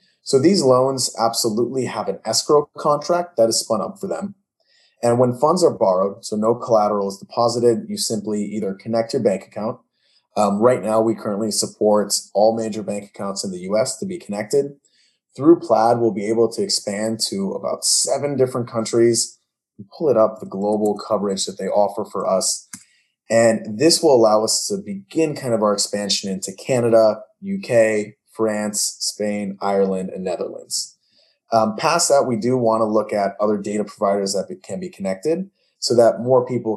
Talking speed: 180 wpm